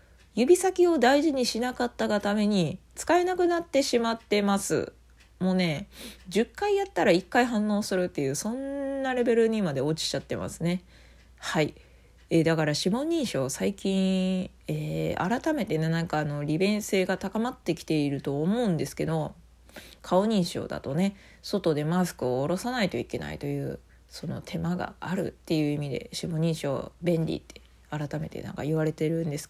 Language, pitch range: Japanese, 150-200 Hz